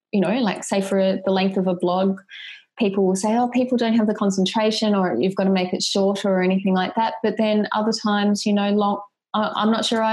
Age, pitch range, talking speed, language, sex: 20-39, 190-225 Hz, 250 wpm, English, female